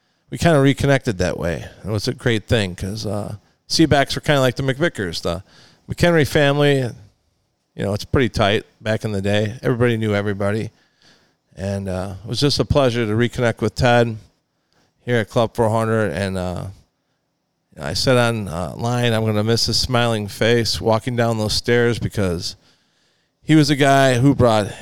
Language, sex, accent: English, male, American